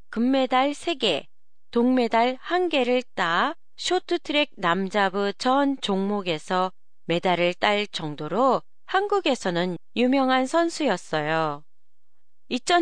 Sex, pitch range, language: female, 180-260 Hz, Japanese